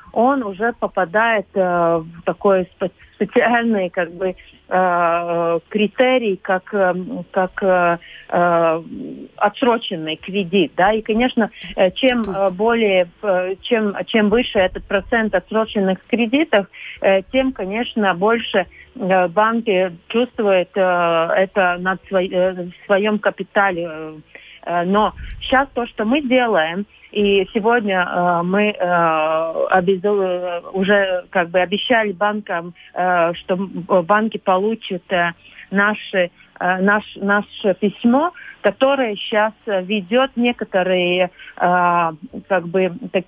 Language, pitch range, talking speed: Russian, 180-220 Hz, 80 wpm